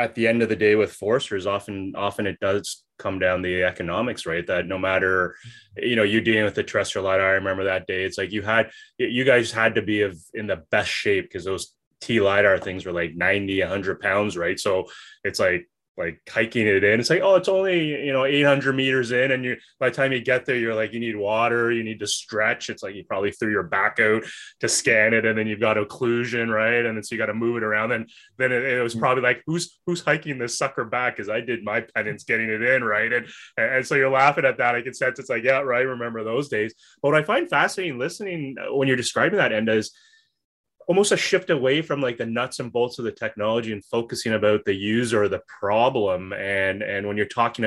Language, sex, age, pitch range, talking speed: English, male, 20-39, 105-125 Hz, 245 wpm